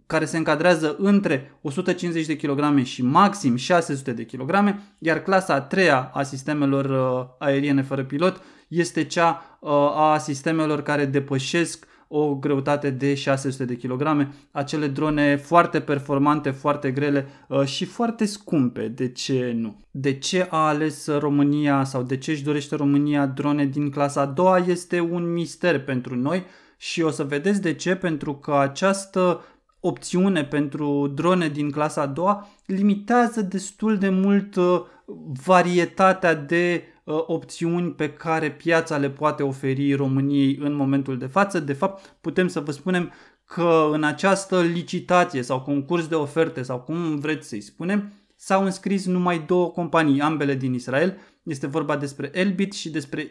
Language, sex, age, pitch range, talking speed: Romanian, male, 20-39, 140-175 Hz, 150 wpm